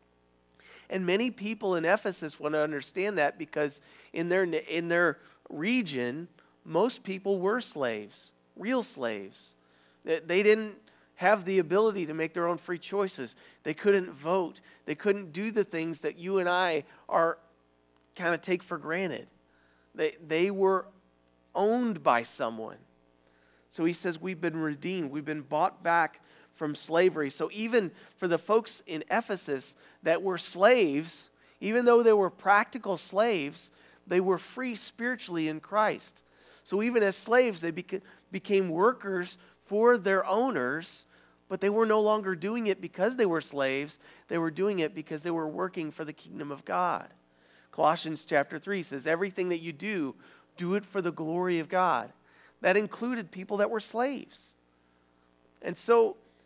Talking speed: 155 wpm